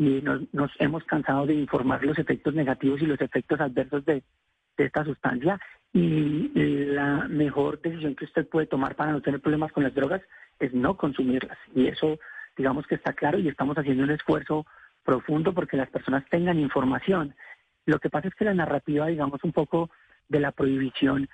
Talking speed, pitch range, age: 190 wpm, 135-155 Hz, 40-59